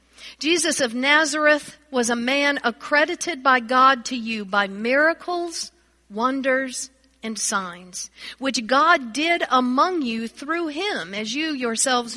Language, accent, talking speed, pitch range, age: English, American, 130 wpm, 230-290 Hz, 50-69